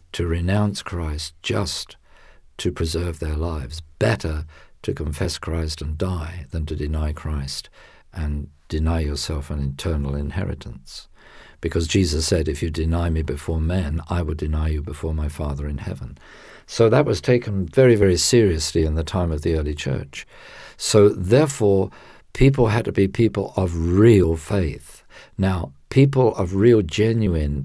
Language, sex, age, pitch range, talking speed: English, male, 50-69, 80-100 Hz, 155 wpm